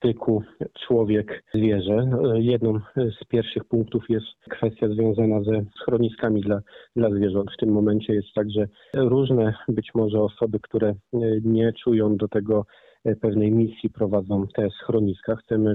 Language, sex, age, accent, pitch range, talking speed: Polish, male, 40-59, native, 105-115 Hz, 135 wpm